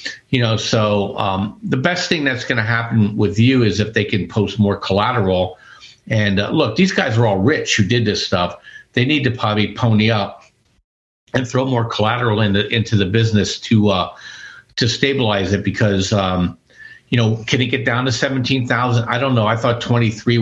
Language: English